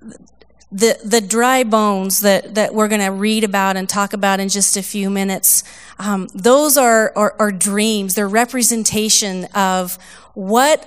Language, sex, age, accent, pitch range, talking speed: English, female, 30-49, American, 200-235 Hz, 170 wpm